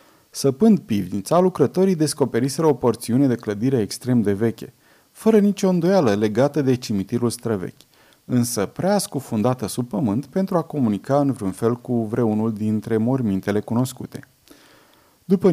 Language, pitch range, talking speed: Romanian, 115-150 Hz, 135 wpm